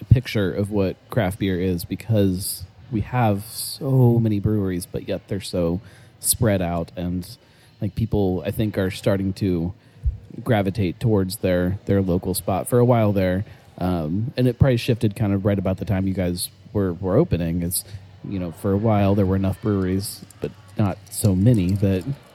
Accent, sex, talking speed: American, male, 180 wpm